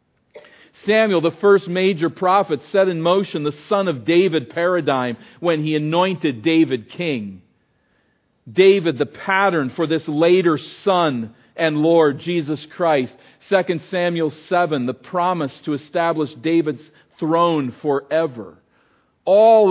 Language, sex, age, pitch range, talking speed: English, male, 50-69, 120-170 Hz, 120 wpm